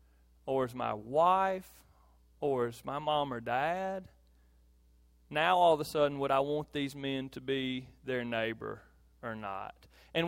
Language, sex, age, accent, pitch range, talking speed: English, male, 30-49, American, 115-170 Hz, 160 wpm